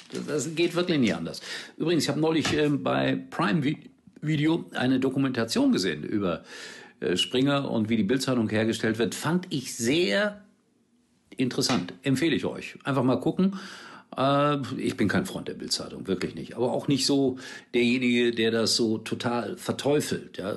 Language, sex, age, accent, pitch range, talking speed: German, male, 50-69, German, 100-140 Hz, 160 wpm